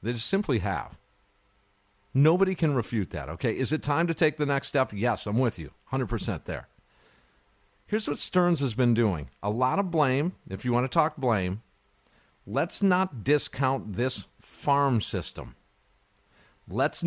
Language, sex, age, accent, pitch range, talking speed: English, male, 50-69, American, 100-150 Hz, 165 wpm